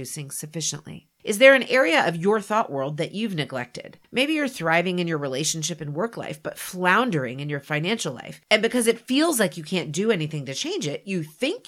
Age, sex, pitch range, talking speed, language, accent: 40-59, female, 155-230 Hz, 210 wpm, English, American